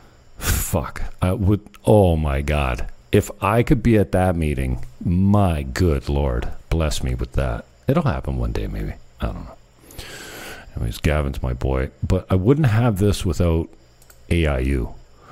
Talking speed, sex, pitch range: 155 wpm, male, 65-105 Hz